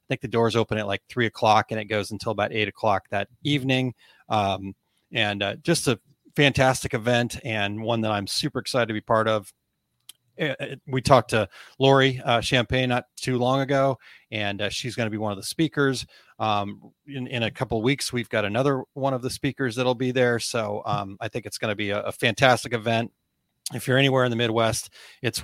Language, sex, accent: English, male, American